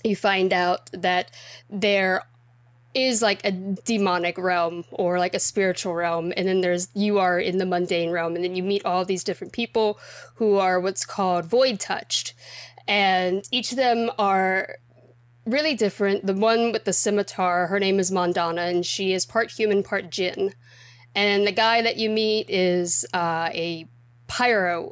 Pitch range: 175-215 Hz